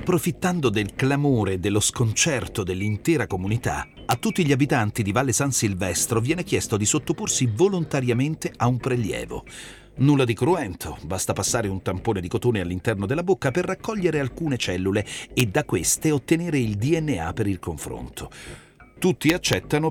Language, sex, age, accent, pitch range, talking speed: Italian, male, 40-59, native, 95-145 Hz, 155 wpm